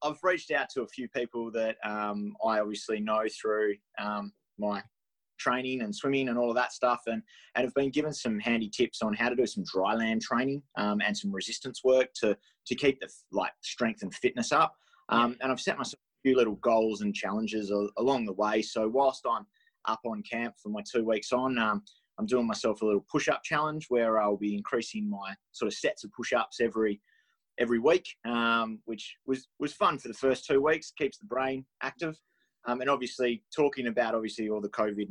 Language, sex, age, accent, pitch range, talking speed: English, male, 20-39, Australian, 110-130 Hz, 210 wpm